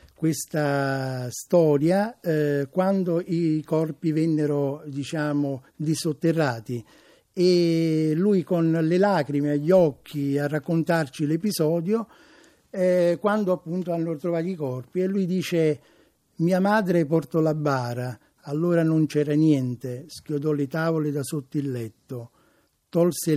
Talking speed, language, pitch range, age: 120 wpm, Italian, 140-165 Hz, 60-79